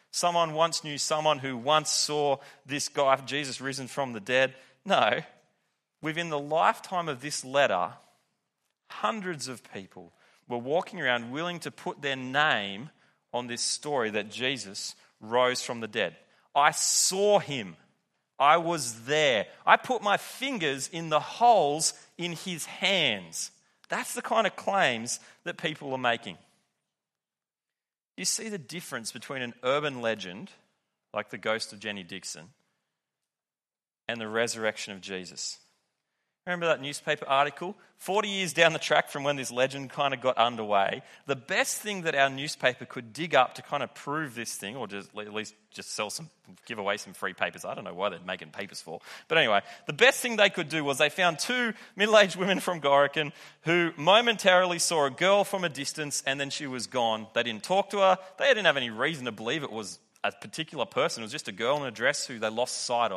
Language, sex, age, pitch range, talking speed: English, male, 30-49, 125-170 Hz, 185 wpm